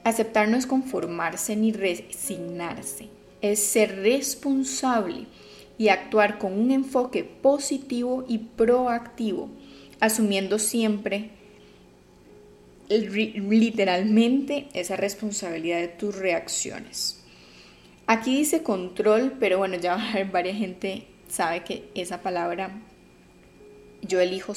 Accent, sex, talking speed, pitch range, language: Colombian, female, 95 wpm, 180-230 Hz, Spanish